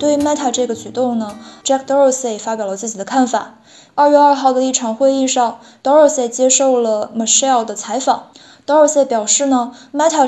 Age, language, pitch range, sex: 20-39, Chinese, 225-270 Hz, female